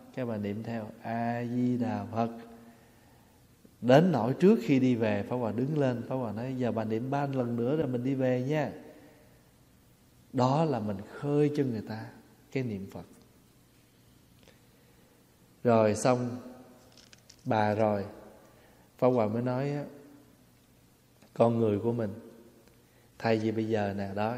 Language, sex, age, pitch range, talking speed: Vietnamese, male, 20-39, 105-125 Hz, 150 wpm